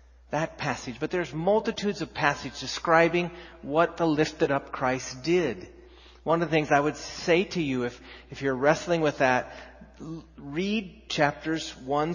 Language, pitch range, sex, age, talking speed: English, 125-170 Hz, male, 40-59, 165 wpm